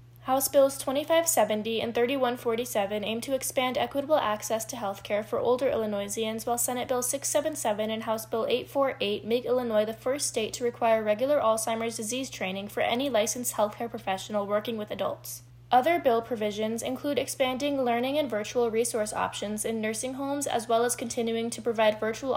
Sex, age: female, 10-29